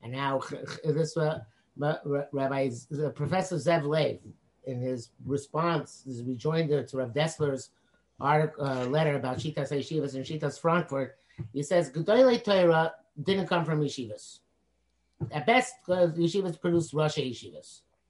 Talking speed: 125 wpm